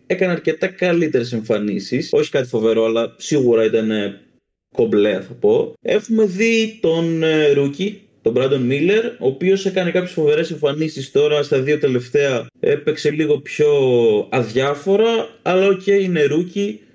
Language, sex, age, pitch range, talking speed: Greek, male, 20-39, 120-195 Hz, 140 wpm